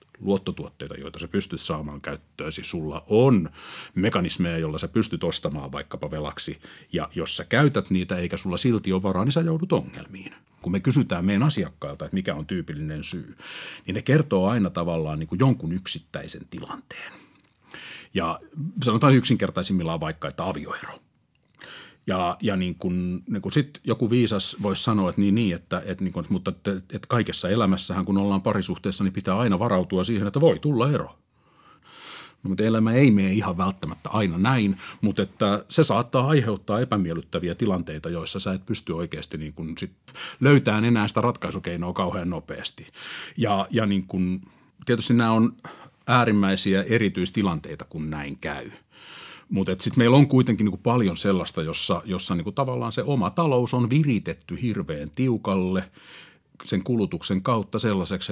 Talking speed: 155 wpm